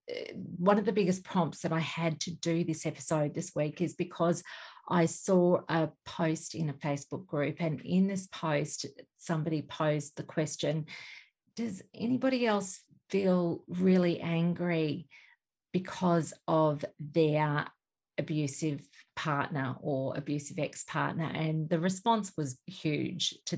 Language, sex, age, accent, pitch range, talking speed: English, female, 40-59, Australian, 150-170 Hz, 130 wpm